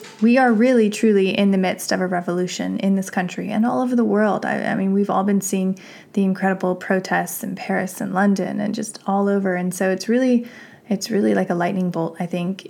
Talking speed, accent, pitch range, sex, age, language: 225 wpm, American, 185-215 Hz, female, 20-39, English